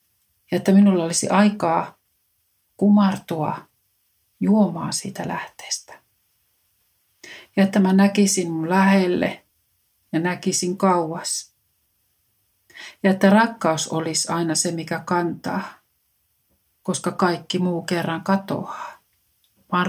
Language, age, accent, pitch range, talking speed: Finnish, 60-79, native, 155-195 Hz, 95 wpm